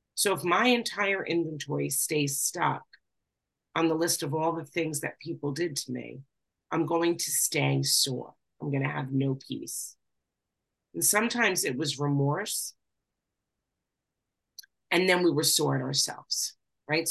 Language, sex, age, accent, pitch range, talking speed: English, female, 40-59, American, 135-165 Hz, 145 wpm